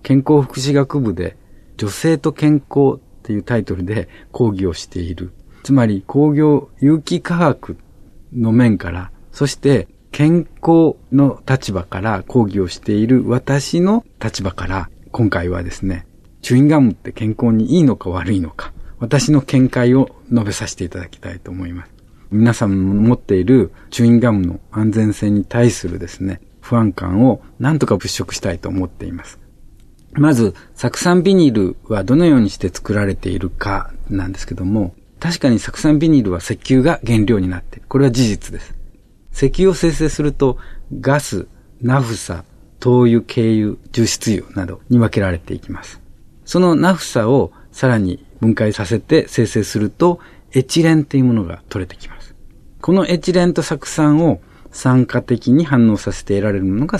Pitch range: 95-135 Hz